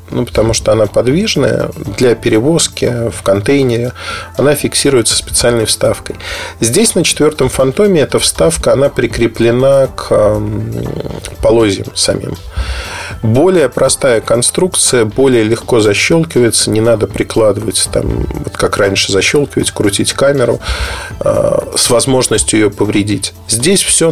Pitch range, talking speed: 100-140 Hz, 120 wpm